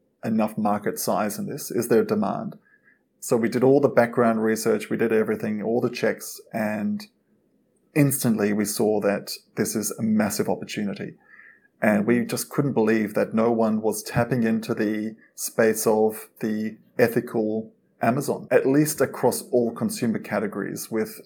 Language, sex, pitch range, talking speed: English, male, 110-120 Hz, 155 wpm